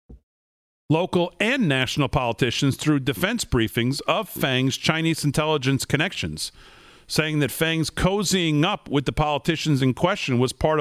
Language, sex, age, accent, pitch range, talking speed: English, male, 50-69, American, 130-170 Hz, 135 wpm